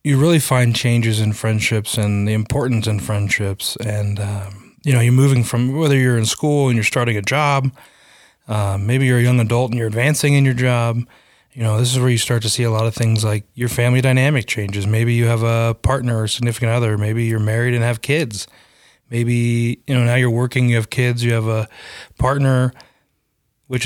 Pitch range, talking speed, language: 110-125 Hz, 215 wpm, English